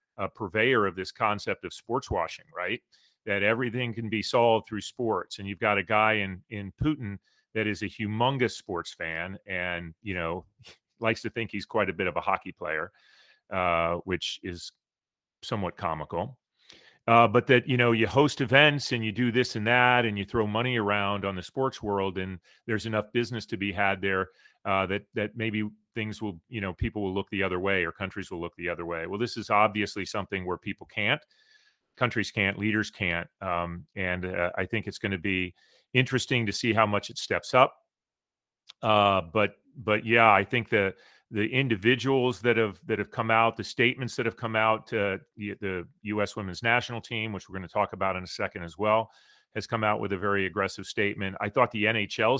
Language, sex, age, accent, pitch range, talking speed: English, male, 40-59, American, 95-115 Hz, 205 wpm